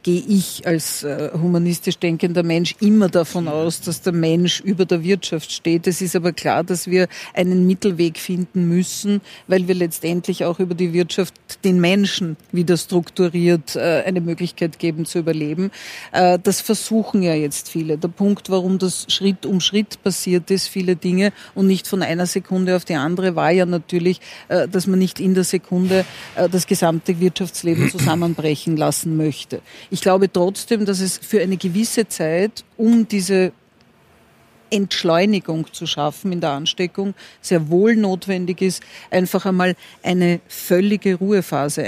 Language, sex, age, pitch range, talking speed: German, female, 50-69, 175-200 Hz, 160 wpm